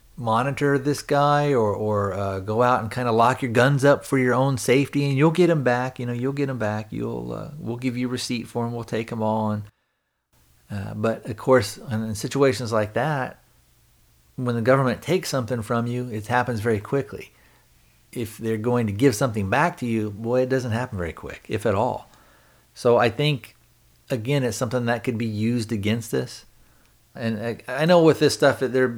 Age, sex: 40-59, male